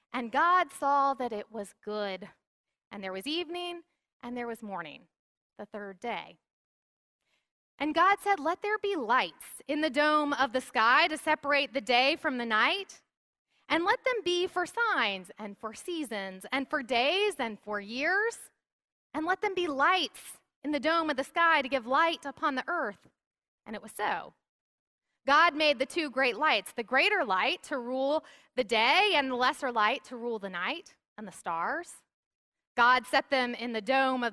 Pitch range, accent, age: 235-325 Hz, American, 30-49